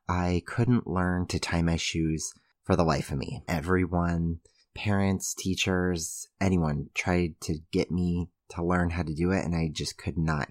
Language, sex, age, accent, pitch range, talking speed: English, male, 30-49, American, 80-95 Hz, 175 wpm